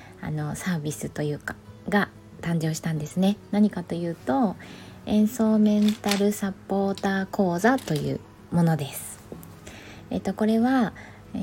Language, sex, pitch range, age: Japanese, female, 160-220 Hz, 20-39